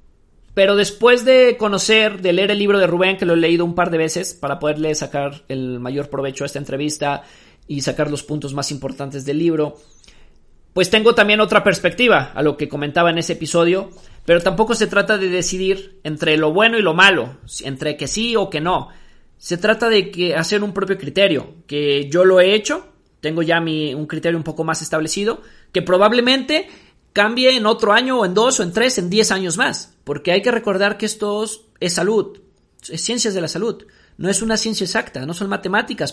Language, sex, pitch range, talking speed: Spanish, male, 155-210 Hz, 205 wpm